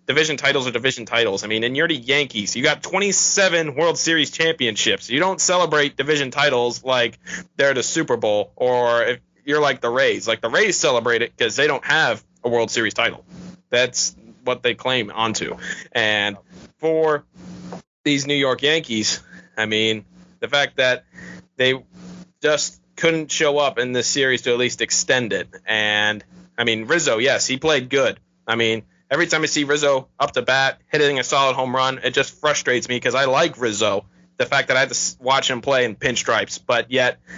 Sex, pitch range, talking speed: male, 120-155 Hz, 195 wpm